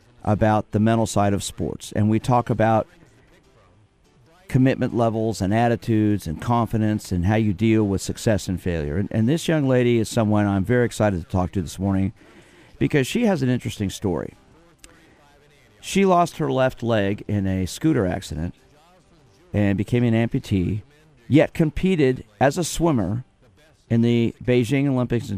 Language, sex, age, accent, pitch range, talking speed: English, male, 50-69, American, 100-130 Hz, 160 wpm